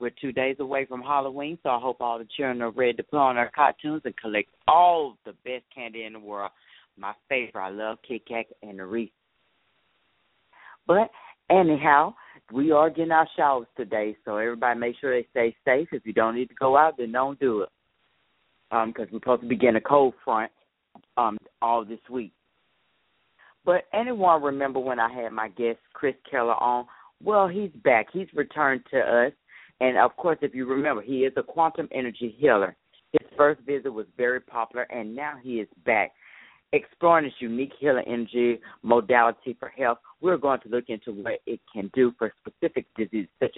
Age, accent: 40-59, American